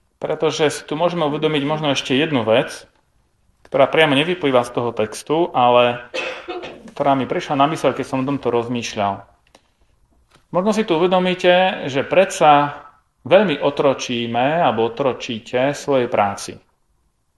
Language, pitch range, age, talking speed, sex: Slovak, 120-155 Hz, 30-49, 135 wpm, male